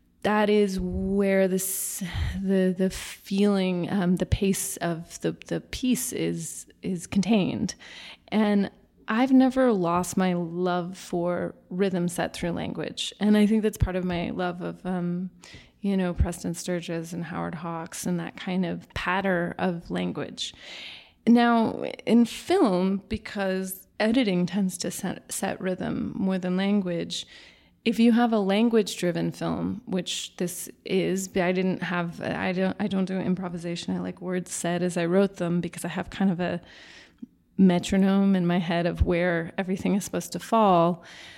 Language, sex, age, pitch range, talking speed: English, female, 20-39, 175-205 Hz, 150 wpm